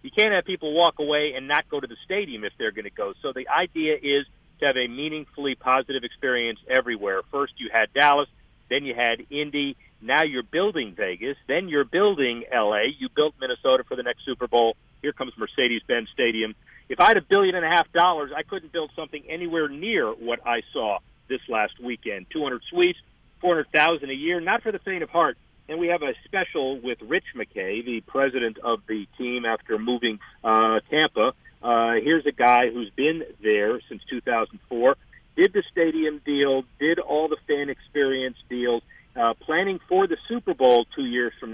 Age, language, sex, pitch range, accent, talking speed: 50-69, English, male, 120-170 Hz, American, 190 wpm